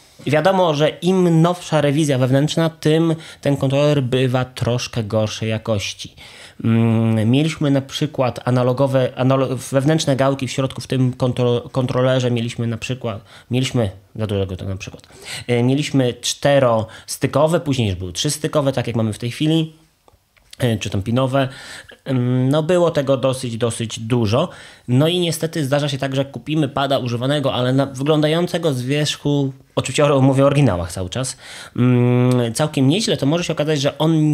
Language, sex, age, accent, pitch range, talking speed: Polish, male, 20-39, native, 120-145 Hz, 150 wpm